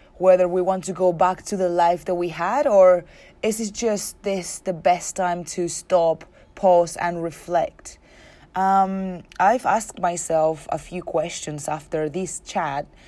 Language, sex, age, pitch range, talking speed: English, female, 20-39, 155-185 Hz, 160 wpm